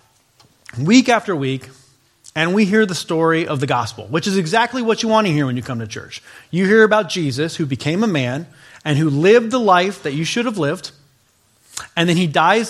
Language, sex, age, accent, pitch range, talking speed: English, male, 40-59, American, 125-200 Hz, 215 wpm